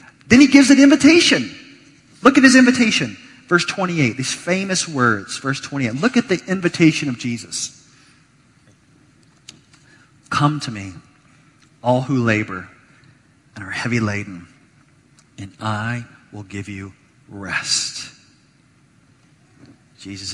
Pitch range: 110-145 Hz